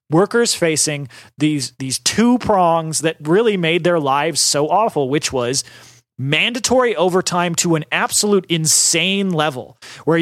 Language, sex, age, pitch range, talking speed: English, male, 30-49, 135-185 Hz, 135 wpm